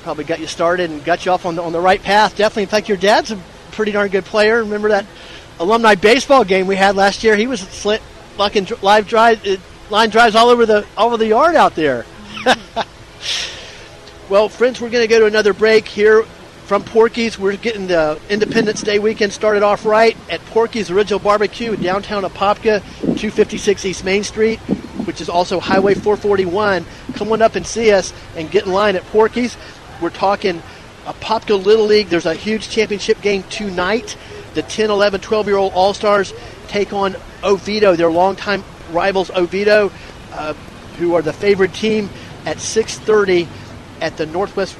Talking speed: 180 wpm